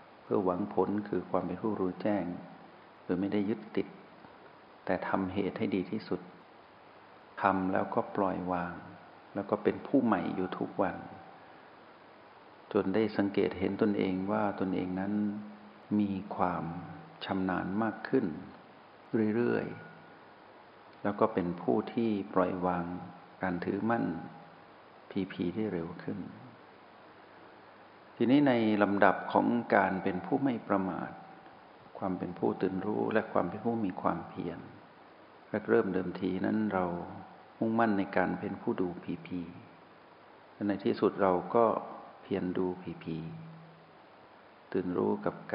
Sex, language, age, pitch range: male, Thai, 60-79, 90-105 Hz